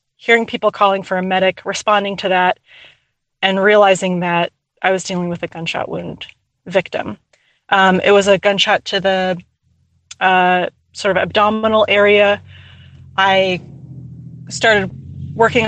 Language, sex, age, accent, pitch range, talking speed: English, female, 30-49, American, 175-205 Hz, 135 wpm